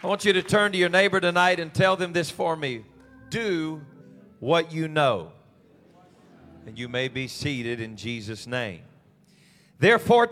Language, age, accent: English, 40-59, American